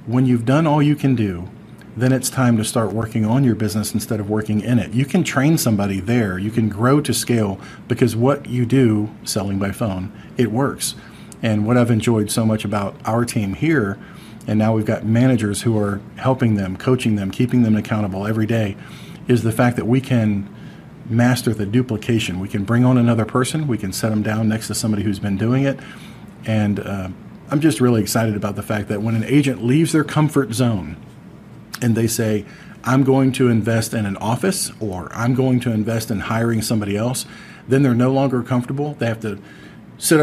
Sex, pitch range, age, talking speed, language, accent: male, 110-130 Hz, 40-59, 205 wpm, English, American